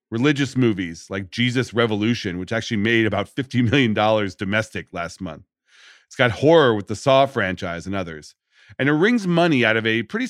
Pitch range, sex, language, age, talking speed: 100-140 Hz, male, English, 40-59, 180 wpm